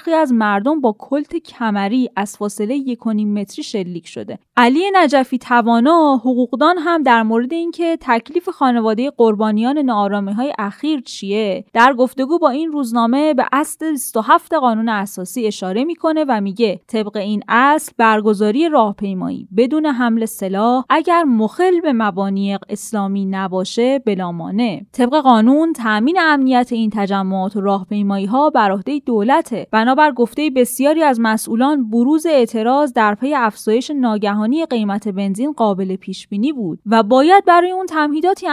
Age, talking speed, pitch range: 10-29, 135 wpm, 215-295 Hz